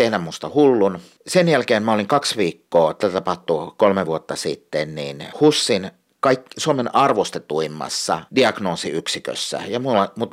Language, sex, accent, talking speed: Finnish, male, native, 135 wpm